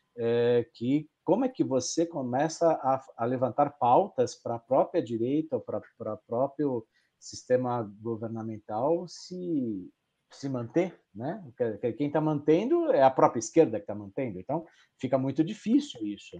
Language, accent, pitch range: Portuguese, Brazilian, 120-160 Hz